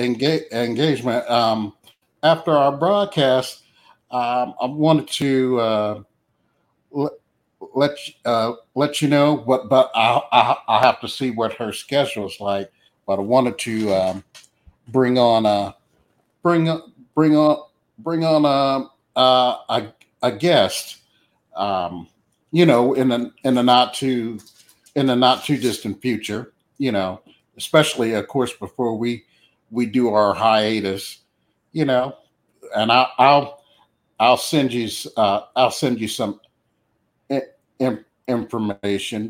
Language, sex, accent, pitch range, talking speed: English, male, American, 105-135 Hz, 135 wpm